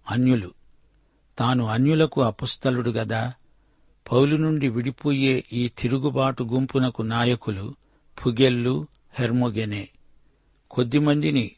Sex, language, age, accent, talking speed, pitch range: male, Telugu, 60-79, native, 75 wpm, 115-135 Hz